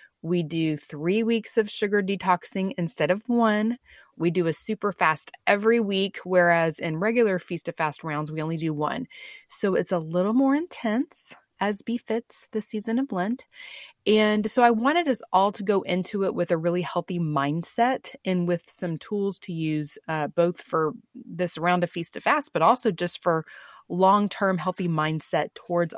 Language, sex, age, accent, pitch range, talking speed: English, female, 30-49, American, 165-215 Hz, 180 wpm